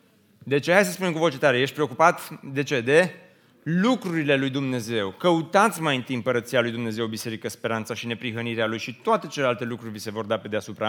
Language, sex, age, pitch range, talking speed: Romanian, male, 30-49, 130-200 Hz, 200 wpm